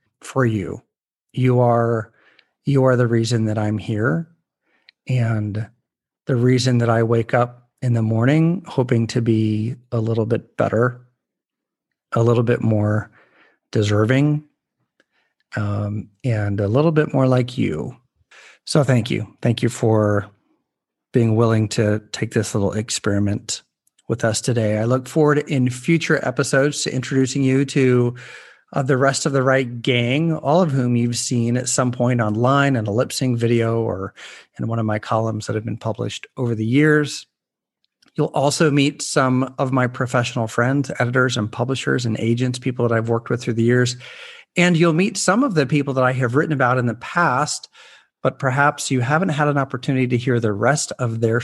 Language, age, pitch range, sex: English, 40-59, 115-135 Hz, male